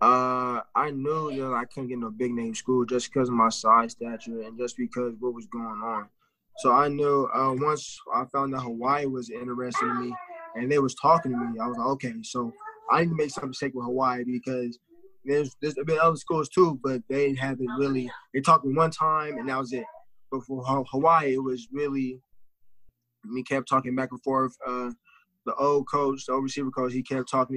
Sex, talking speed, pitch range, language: male, 225 wpm, 125-140 Hz, English